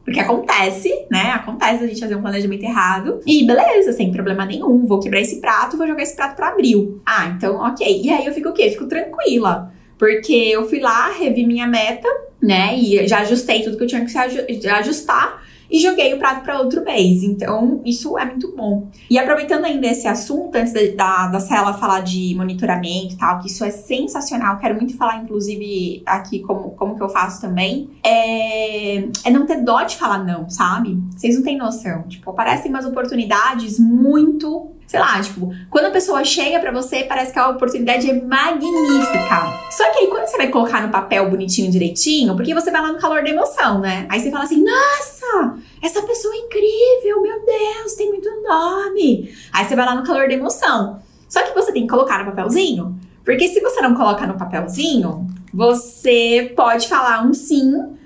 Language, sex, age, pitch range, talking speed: Portuguese, female, 10-29, 205-300 Hz, 200 wpm